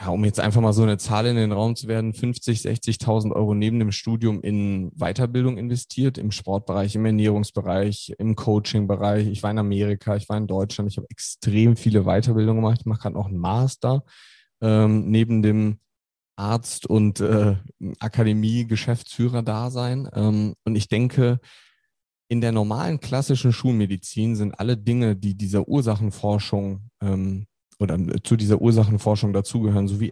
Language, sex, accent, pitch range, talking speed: English, male, German, 100-120 Hz, 150 wpm